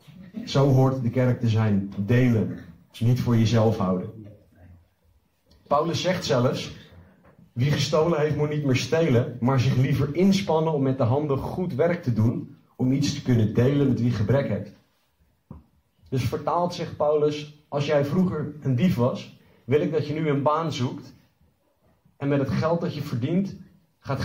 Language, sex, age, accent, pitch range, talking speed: Dutch, male, 40-59, Dutch, 105-140 Hz, 175 wpm